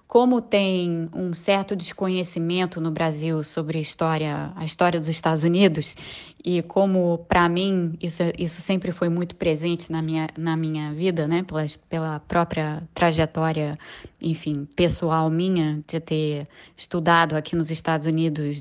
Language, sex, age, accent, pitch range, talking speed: Portuguese, female, 20-39, Brazilian, 155-175 Hz, 145 wpm